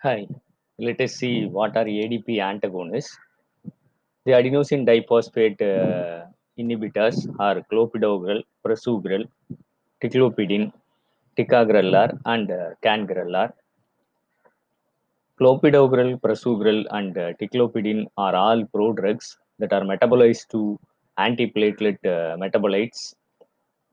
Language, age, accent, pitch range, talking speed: Tamil, 20-39, native, 100-120 Hz, 95 wpm